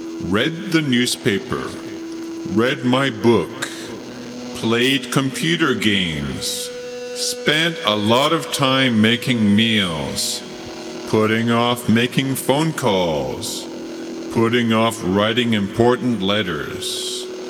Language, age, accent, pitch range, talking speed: English, 50-69, American, 105-155 Hz, 90 wpm